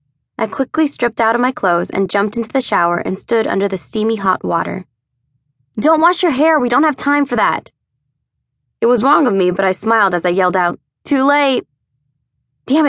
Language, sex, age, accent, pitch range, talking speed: English, female, 20-39, American, 165-230 Hz, 205 wpm